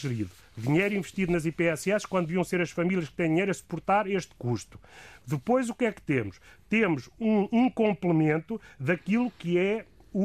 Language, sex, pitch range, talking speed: Portuguese, male, 150-205 Hz, 175 wpm